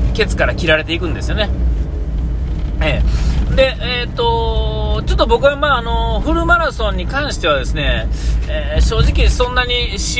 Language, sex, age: Japanese, male, 40-59